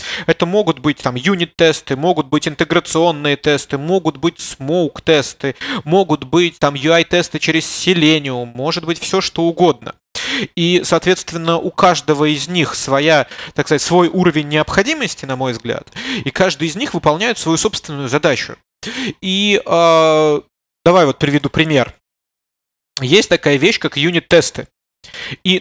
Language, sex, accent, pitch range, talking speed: Russian, male, native, 140-175 Hz, 135 wpm